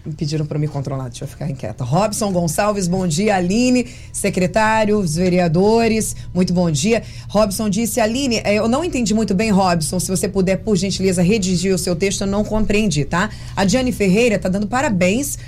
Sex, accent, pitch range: female, Brazilian, 170-220 Hz